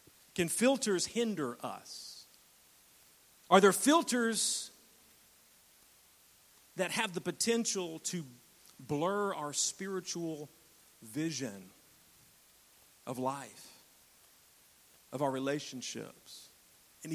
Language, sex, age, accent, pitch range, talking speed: English, male, 40-59, American, 130-175 Hz, 75 wpm